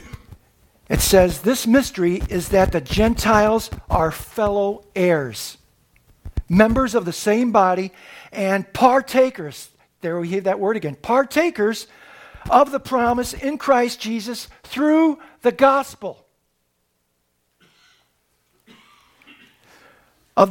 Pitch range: 195-260 Hz